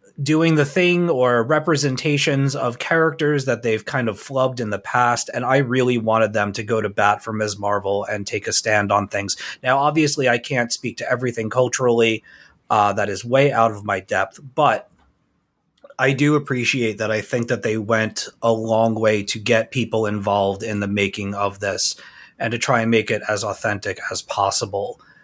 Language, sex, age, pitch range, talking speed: English, male, 30-49, 105-130 Hz, 195 wpm